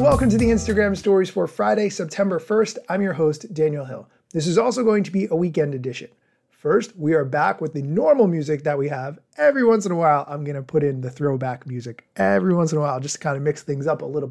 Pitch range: 145-205 Hz